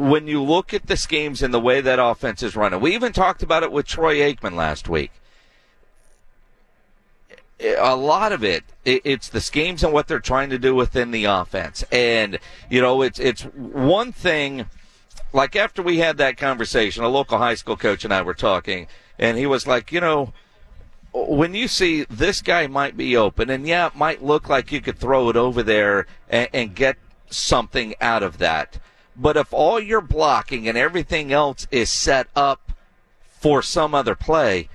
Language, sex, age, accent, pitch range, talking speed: English, male, 50-69, American, 125-160 Hz, 190 wpm